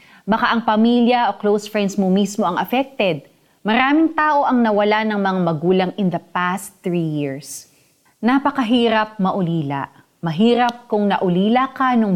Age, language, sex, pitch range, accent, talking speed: 30-49, Filipino, female, 185-240 Hz, native, 145 wpm